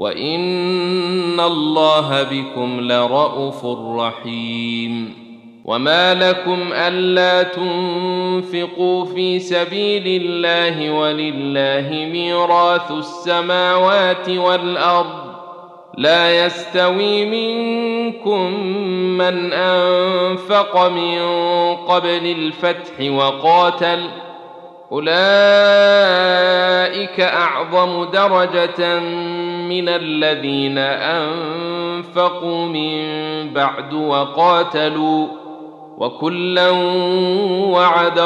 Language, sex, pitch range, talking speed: Arabic, male, 155-180 Hz, 55 wpm